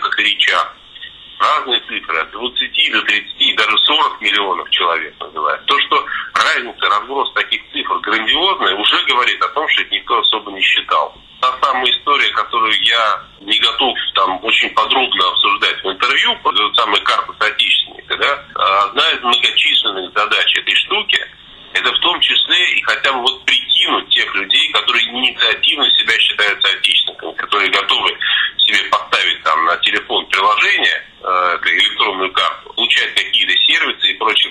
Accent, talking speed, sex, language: native, 155 wpm, male, Russian